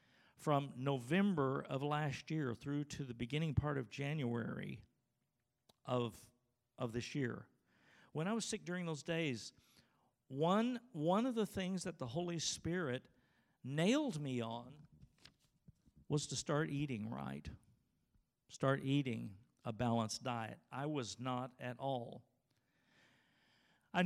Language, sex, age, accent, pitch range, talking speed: English, male, 50-69, American, 125-165 Hz, 125 wpm